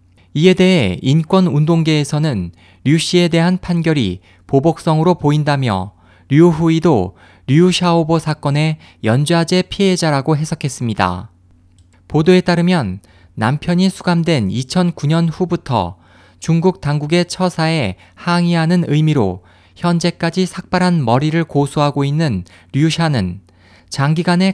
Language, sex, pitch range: Korean, male, 105-170 Hz